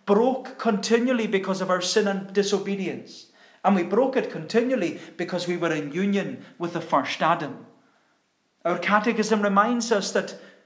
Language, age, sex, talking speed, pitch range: English, 40-59, male, 150 wpm, 170-220 Hz